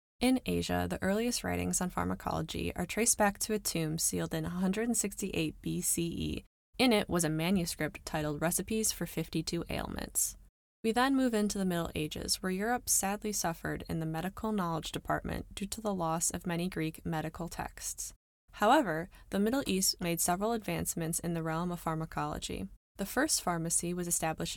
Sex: female